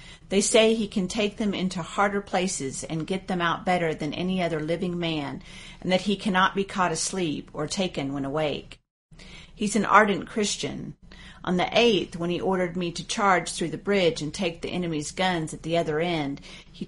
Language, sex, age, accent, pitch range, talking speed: English, female, 40-59, American, 160-195 Hz, 200 wpm